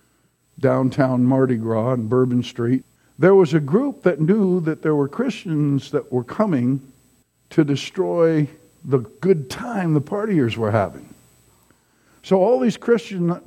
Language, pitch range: English, 130-195 Hz